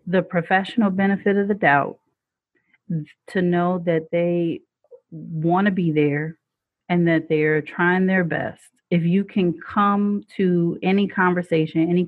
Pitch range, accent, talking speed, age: 145-175 Hz, American, 140 wpm, 30-49